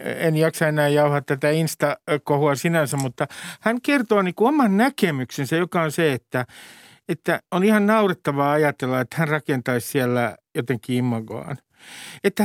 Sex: male